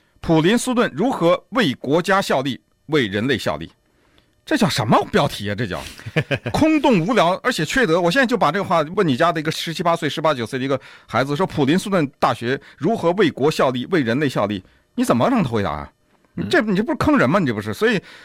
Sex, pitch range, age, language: male, 140-200 Hz, 50-69, Chinese